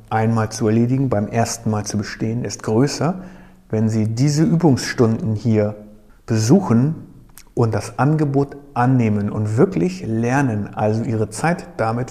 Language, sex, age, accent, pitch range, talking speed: German, male, 50-69, German, 105-130 Hz, 135 wpm